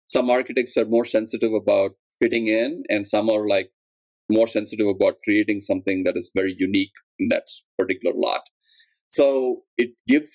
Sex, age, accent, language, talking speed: male, 30-49, Indian, English, 160 wpm